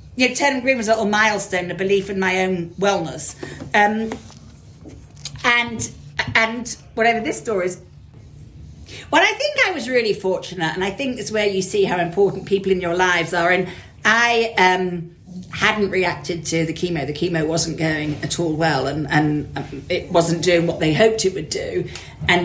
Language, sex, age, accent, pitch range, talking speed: English, female, 40-59, British, 165-225 Hz, 185 wpm